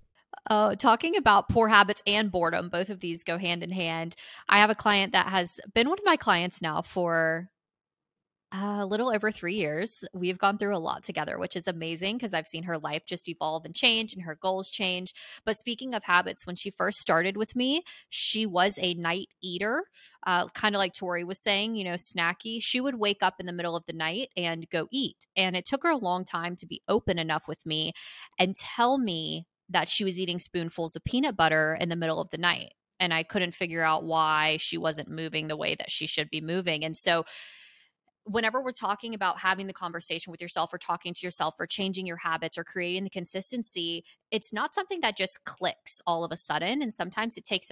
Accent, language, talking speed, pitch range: American, English, 220 wpm, 170-210 Hz